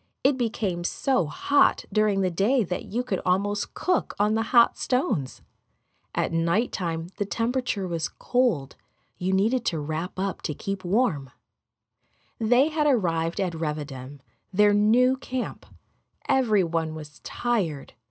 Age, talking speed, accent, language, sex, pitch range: 40-59, 135 wpm, American, English, female, 150-230 Hz